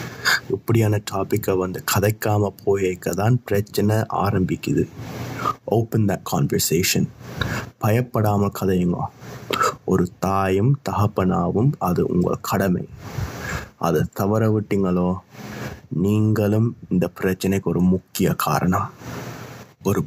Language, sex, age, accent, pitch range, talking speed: Tamil, male, 20-39, native, 95-115 Hz, 35 wpm